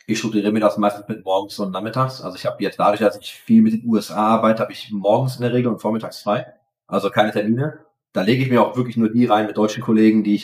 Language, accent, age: German, German, 30-49